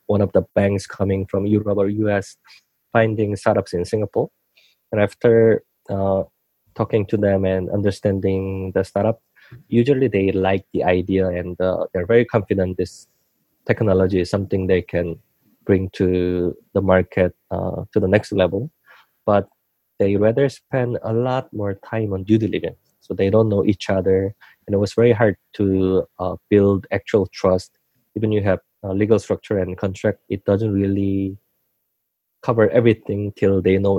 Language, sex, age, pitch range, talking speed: English, male, 20-39, 95-110 Hz, 160 wpm